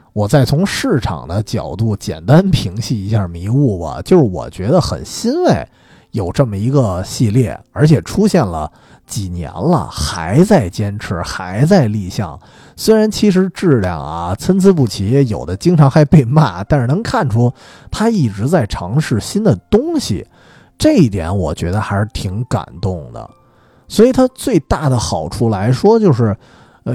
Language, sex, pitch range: Chinese, male, 100-155 Hz